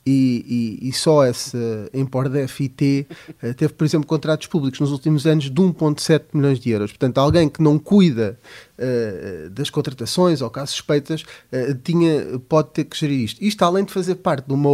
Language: Portuguese